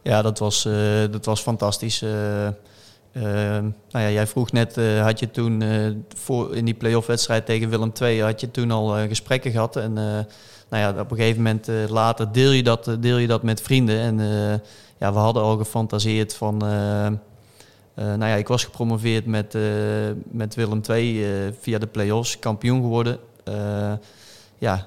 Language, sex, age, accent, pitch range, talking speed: Dutch, male, 30-49, Dutch, 105-120 Hz, 195 wpm